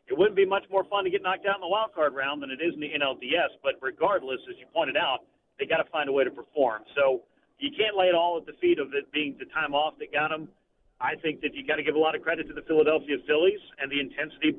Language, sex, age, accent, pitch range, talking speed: English, male, 40-59, American, 145-210 Hz, 290 wpm